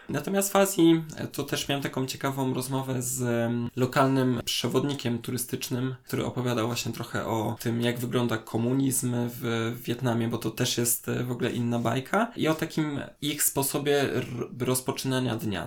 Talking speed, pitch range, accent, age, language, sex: 150 wpm, 120-140 Hz, native, 20-39, Polish, male